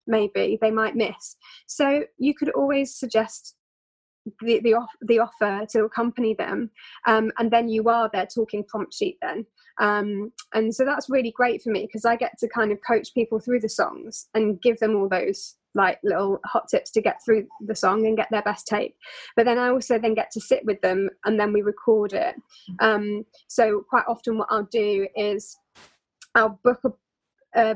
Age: 10-29